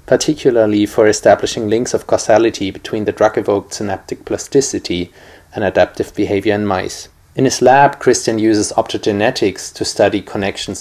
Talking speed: 140 wpm